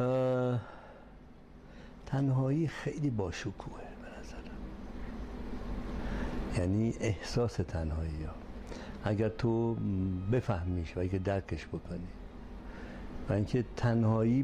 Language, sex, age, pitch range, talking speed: Persian, male, 60-79, 95-120 Hz, 75 wpm